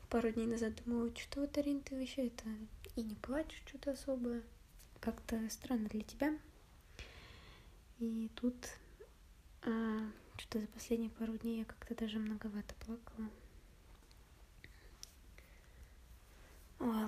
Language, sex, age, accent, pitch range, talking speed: Russian, female, 20-39, native, 215-235 Hz, 110 wpm